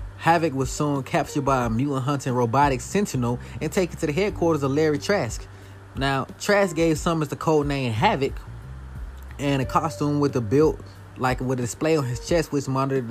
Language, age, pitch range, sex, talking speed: English, 20-39, 120-150 Hz, male, 190 wpm